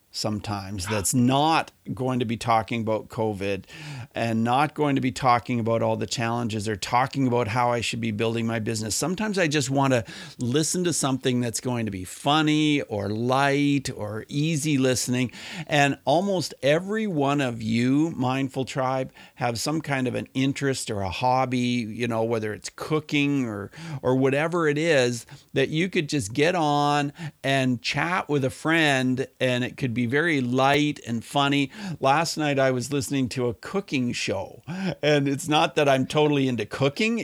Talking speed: 175 wpm